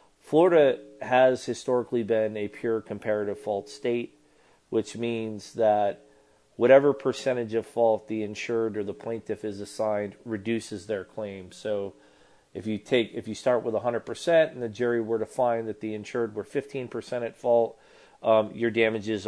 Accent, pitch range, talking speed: American, 105-120 Hz, 160 wpm